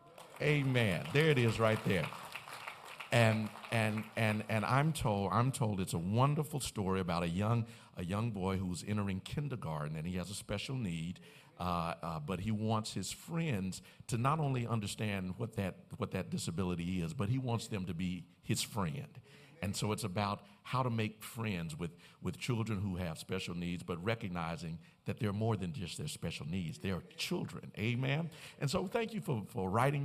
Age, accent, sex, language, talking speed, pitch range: 50-69, American, male, English, 190 wpm, 95-130 Hz